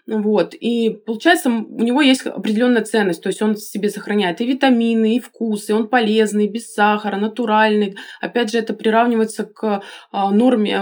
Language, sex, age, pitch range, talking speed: Russian, female, 20-39, 200-245 Hz, 155 wpm